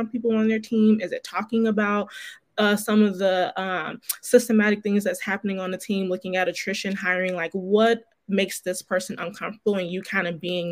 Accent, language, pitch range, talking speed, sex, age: American, English, 190-235 Hz, 195 wpm, female, 20-39